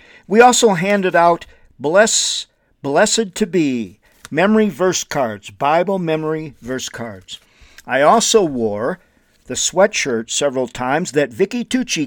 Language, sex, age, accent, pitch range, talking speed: English, male, 50-69, American, 125-185 Hz, 125 wpm